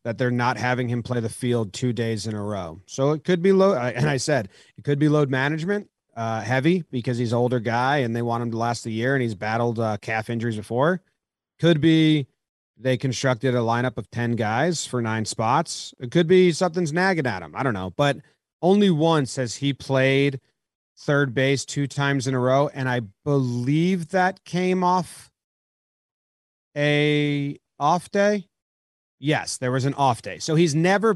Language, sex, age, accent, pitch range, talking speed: English, male, 30-49, American, 115-150 Hz, 195 wpm